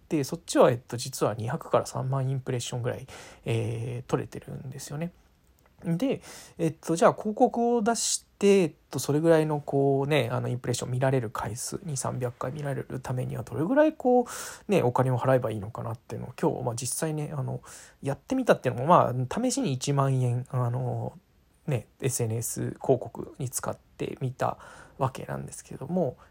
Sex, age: male, 20-39